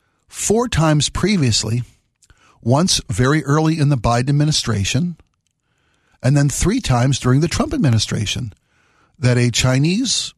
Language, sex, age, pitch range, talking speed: English, male, 60-79, 115-140 Hz, 120 wpm